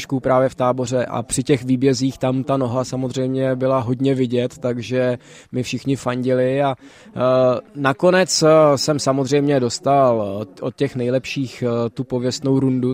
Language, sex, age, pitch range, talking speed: Czech, male, 20-39, 120-130 Hz, 135 wpm